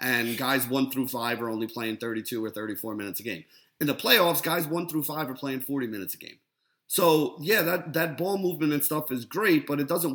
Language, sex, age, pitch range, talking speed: English, male, 30-49, 130-165 Hz, 235 wpm